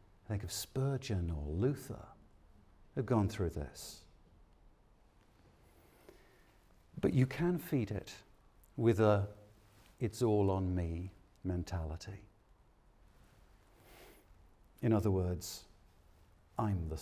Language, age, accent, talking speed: English, 60-79, British, 95 wpm